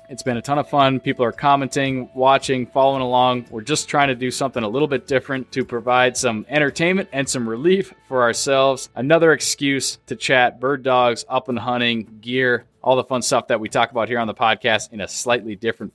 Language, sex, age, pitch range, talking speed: English, male, 20-39, 115-140 Hz, 215 wpm